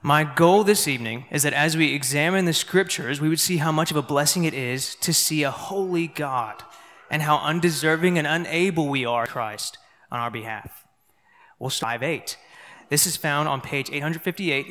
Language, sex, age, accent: English, male, 20-39, American